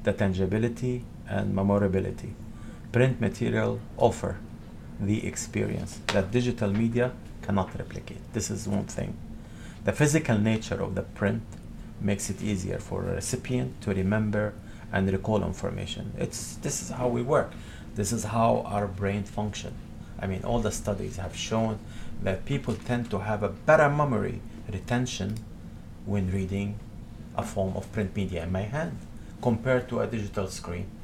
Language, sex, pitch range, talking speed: English, male, 100-120 Hz, 150 wpm